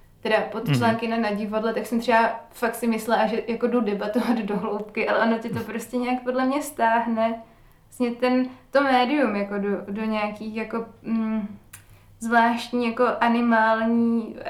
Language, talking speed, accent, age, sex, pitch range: Czech, 170 wpm, native, 20-39, female, 215-235 Hz